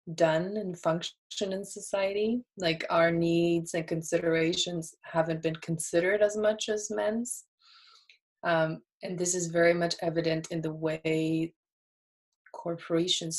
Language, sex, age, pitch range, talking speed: English, female, 20-39, 165-200 Hz, 125 wpm